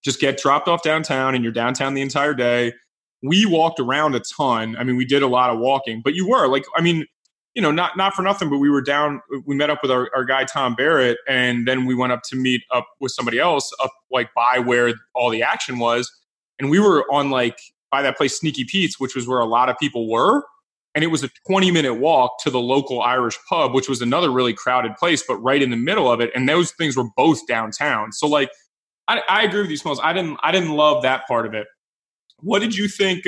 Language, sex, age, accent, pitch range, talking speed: English, male, 20-39, American, 120-150 Hz, 250 wpm